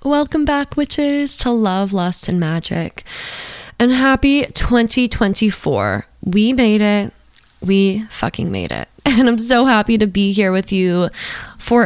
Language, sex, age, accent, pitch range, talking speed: English, female, 20-39, American, 180-230 Hz, 140 wpm